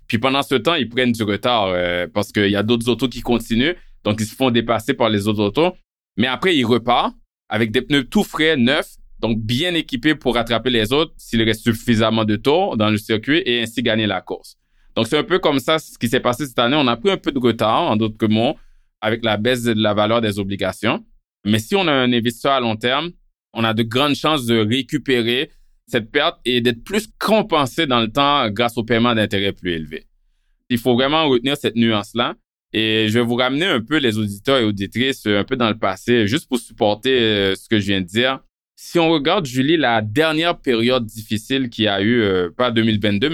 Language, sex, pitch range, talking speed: French, male, 105-130 Hz, 225 wpm